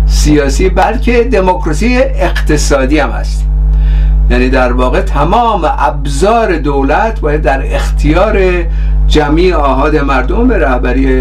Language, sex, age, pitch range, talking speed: Persian, male, 50-69, 130-180 Hz, 100 wpm